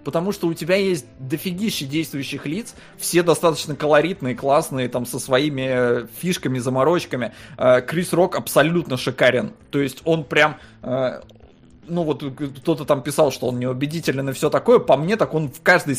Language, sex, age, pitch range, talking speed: Russian, male, 20-39, 135-170 Hz, 160 wpm